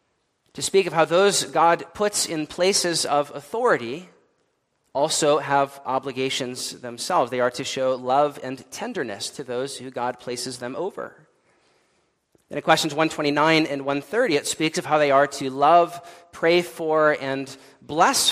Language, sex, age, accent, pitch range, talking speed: English, male, 40-59, American, 140-170 Hz, 150 wpm